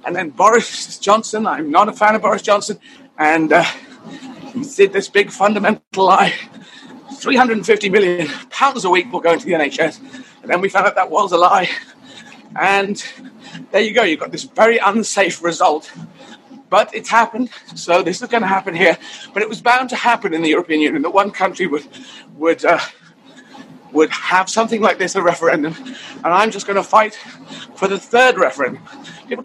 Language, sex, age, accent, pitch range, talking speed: English, male, 40-59, British, 190-255 Hz, 185 wpm